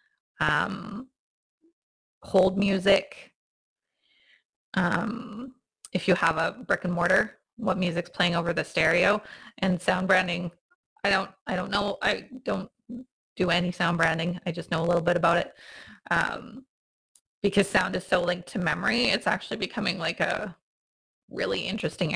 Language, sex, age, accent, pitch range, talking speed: English, female, 20-39, American, 170-210 Hz, 145 wpm